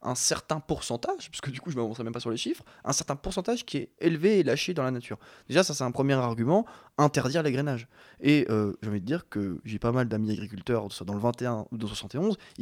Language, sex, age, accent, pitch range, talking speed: French, male, 20-39, French, 110-155 Hz, 250 wpm